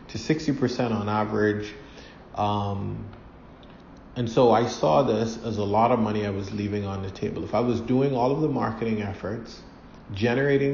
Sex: male